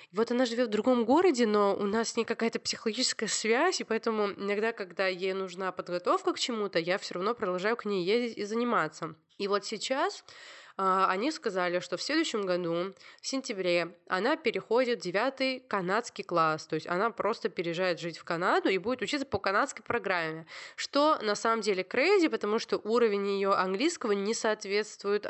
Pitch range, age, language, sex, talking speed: 180-230 Hz, 20-39, Russian, female, 180 wpm